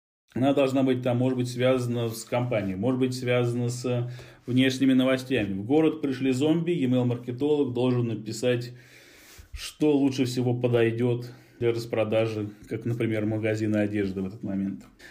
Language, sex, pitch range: Russian, male, 115-140 Hz